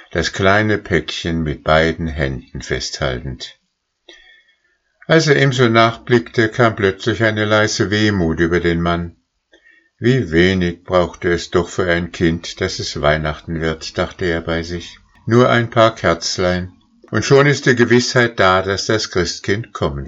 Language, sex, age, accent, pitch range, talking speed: German, male, 60-79, German, 85-110 Hz, 150 wpm